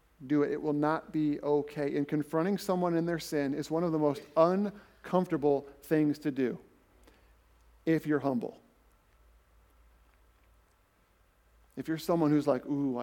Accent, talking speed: American, 145 wpm